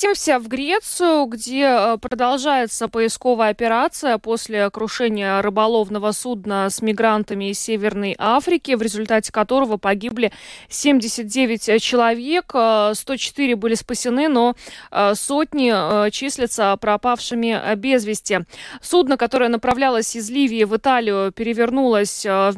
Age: 20-39